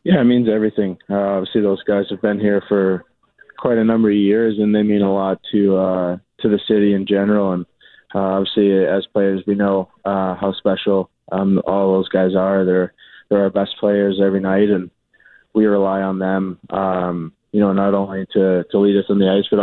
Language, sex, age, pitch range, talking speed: English, male, 20-39, 95-105 Hz, 210 wpm